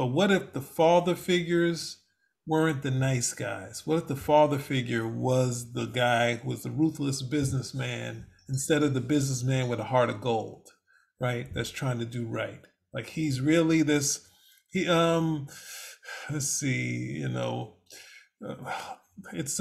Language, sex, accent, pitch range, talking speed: English, male, American, 130-160 Hz, 150 wpm